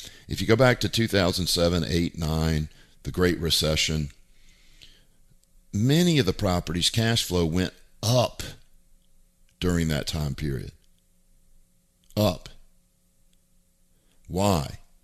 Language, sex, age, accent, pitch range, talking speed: English, male, 50-69, American, 80-100 Hz, 100 wpm